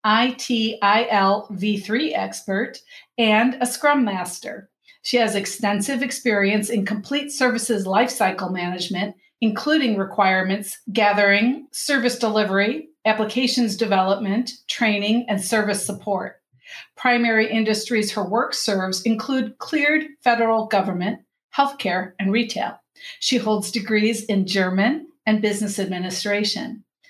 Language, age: English, 50-69